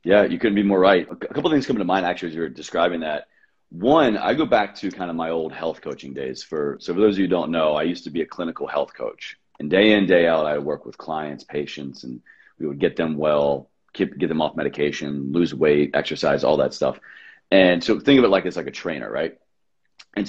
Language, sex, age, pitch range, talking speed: English, male, 30-49, 80-100 Hz, 260 wpm